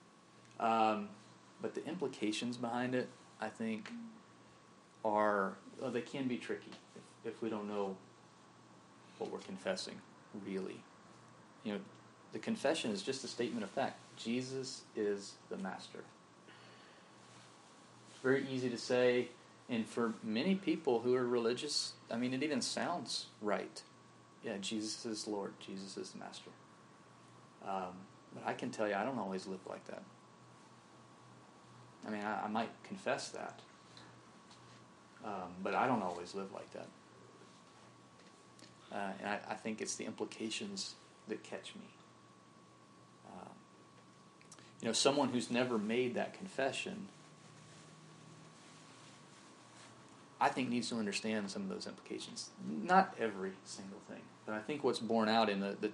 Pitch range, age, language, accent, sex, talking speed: 95-130 Hz, 30-49, English, American, male, 140 wpm